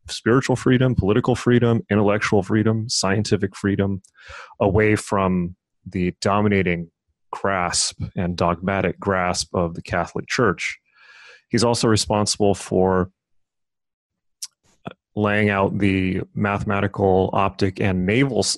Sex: male